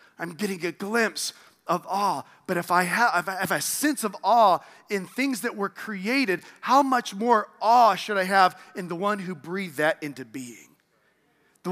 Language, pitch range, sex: English, 160-205 Hz, male